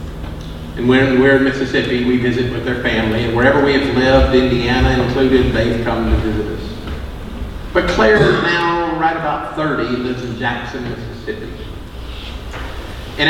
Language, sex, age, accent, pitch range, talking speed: English, male, 50-69, American, 110-135 Hz, 150 wpm